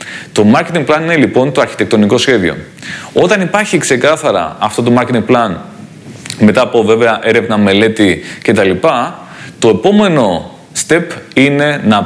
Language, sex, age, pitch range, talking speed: Greek, male, 20-39, 110-135 Hz, 130 wpm